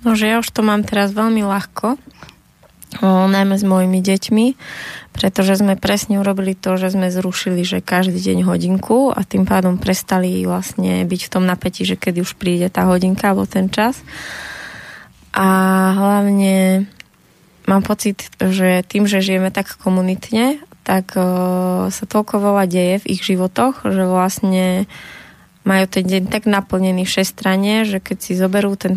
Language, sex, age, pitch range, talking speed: Slovak, female, 20-39, 185-200 Hz, 155 wpm